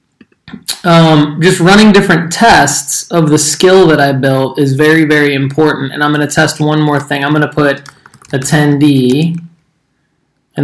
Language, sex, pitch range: English, male, 140-170 Hz